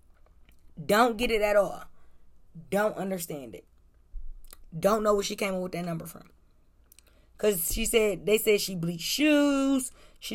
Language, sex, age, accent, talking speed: English, female, 20-39, American, 155 wpm